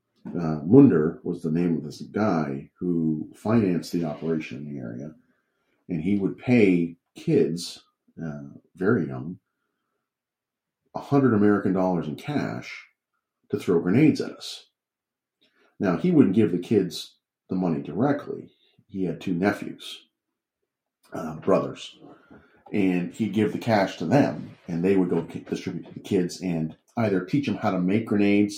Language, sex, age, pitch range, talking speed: English, male, 40-59, 85-95 Hz, 150 wpm